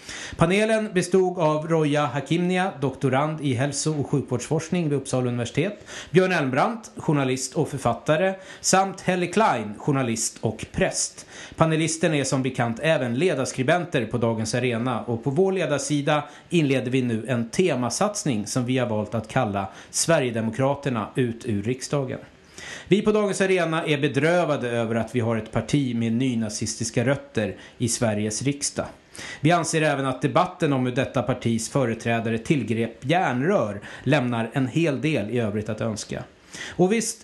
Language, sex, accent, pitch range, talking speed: English, male, Swedish, 115-160 Hz, 150 wpm